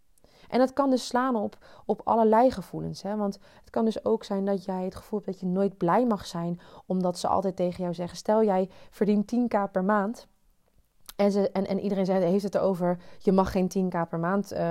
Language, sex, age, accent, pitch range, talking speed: Dutch, female, 20-39, Dutch, 175-225 Hz, 210 wpm